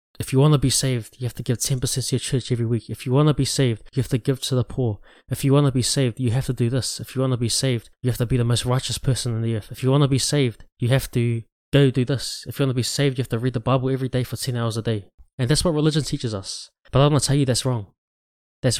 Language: English